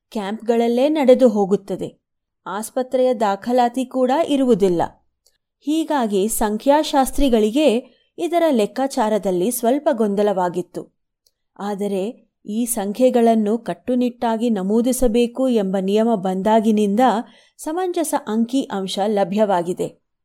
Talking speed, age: 70 wpm, 30-49